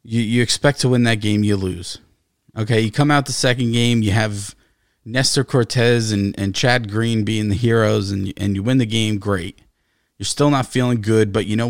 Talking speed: 215 wpm